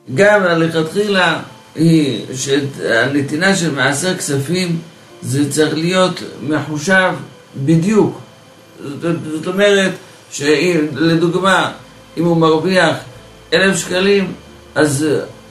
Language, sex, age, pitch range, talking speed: Hebrew, male, 60-79, 150-190 Hz, 80 wpm